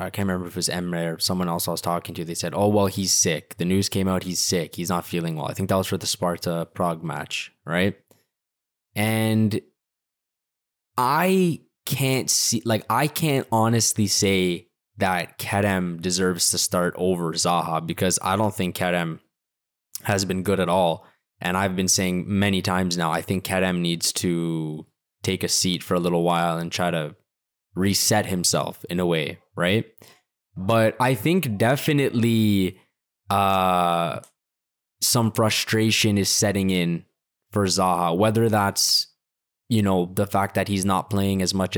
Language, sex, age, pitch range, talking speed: English, male, 20-39, 90-110 Hz, 170 wpm